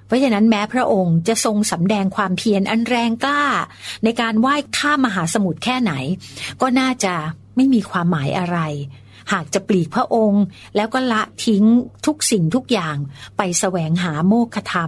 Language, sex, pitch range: Thai, female, 170-230 Hz